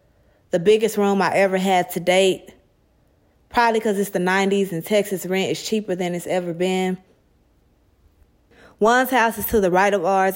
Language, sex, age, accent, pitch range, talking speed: English, female, 20-39, American, 185-205 Hz, 175 wpm